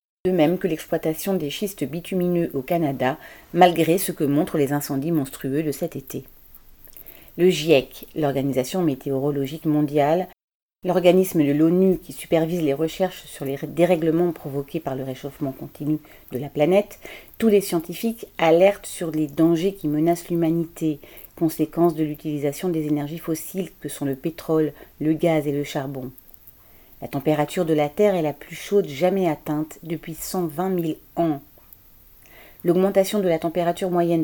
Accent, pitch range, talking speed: French, 145-180 Hz, 150 wpm